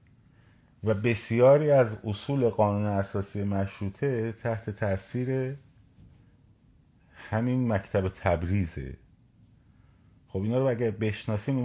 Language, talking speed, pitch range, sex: Persian, 95 wpm, 90-120 Hz, male